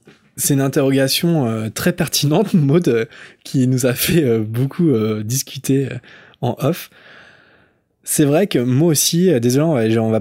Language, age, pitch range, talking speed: French, 20-39, 115-150 Hz, 140 wpm